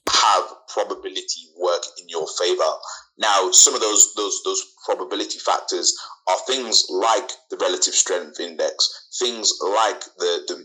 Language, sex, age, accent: English, male, 20-39, British